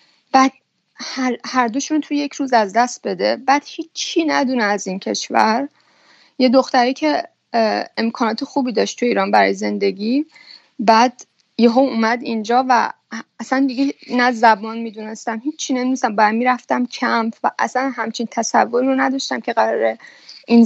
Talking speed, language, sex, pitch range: 145 wpm, Persian, female, 225-270 Hz